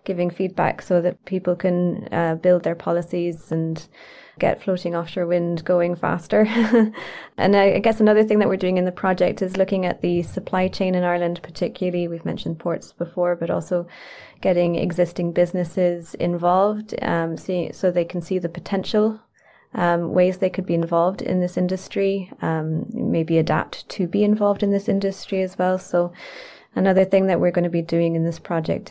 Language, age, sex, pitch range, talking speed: English, 20-39, female, 170-190 Hz, 180 wpm